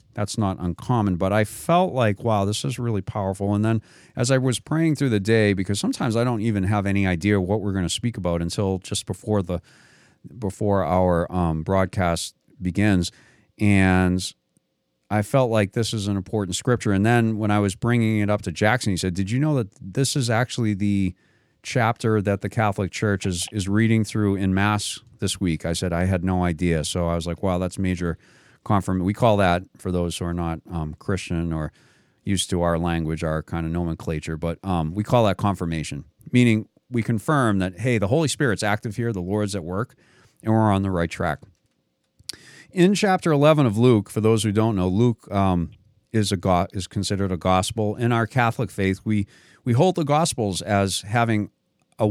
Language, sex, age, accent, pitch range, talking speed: English, male, 40-59, American, 90-115 Hz, 200 wpm